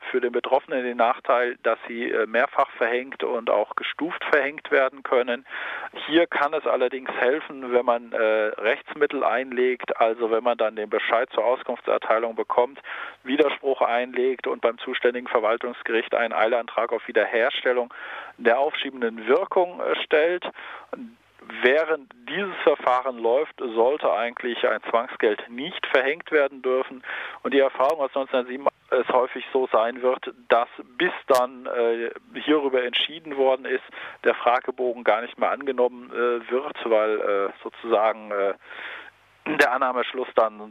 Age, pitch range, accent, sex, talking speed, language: 40-59, 115-135 Hz, German, male, 135 wpm, German